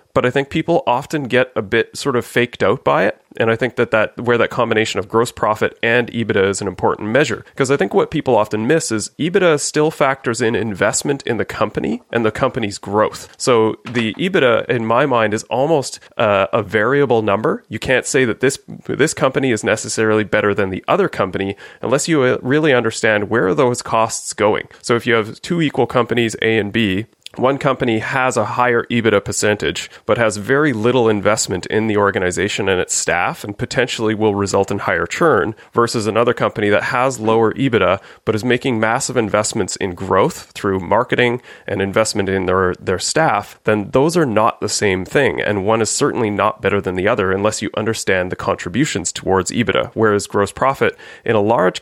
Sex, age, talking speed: male, 30-49, 200 wpm